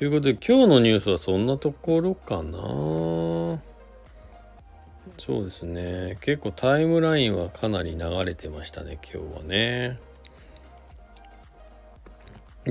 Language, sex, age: Japanese, male, 40-59